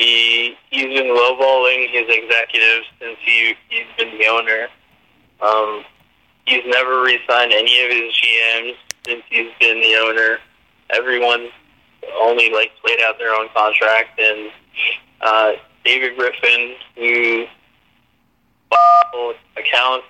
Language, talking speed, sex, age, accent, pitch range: English, 115 wpm, male, 20-39, American, 110-125 Hz